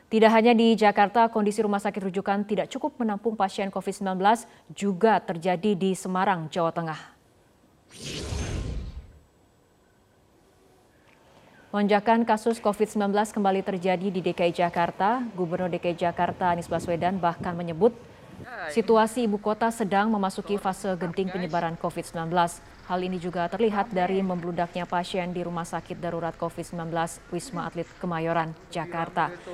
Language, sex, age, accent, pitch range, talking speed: Indonesian, female, 20-39, native, 175-205 Hz, 120 wpm